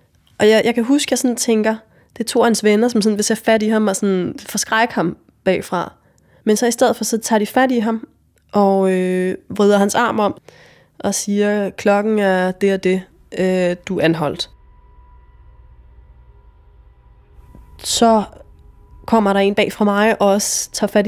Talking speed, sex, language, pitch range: 175 wpm, female, Danish, 160-210 Hz